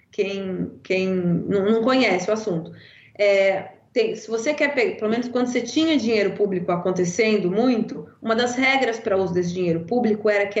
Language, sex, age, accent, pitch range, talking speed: Portuguese, female, 20-39, Brazilian, 200-280 Hz, 165 wpm